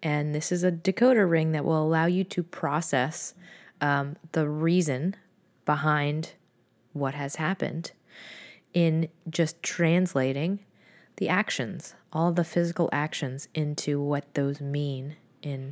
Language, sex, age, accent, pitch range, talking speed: English, female, 20-39, American, 145-180 Hz, 125 wpm